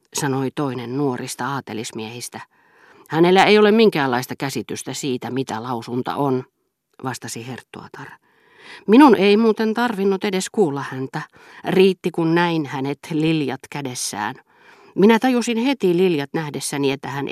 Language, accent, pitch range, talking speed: Finnish, native, 125-180 Hz, 120 wpm